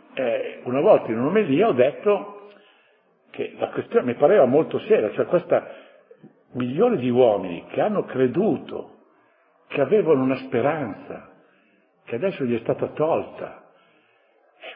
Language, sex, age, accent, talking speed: Italian, male, 60-79, native, 140 wpm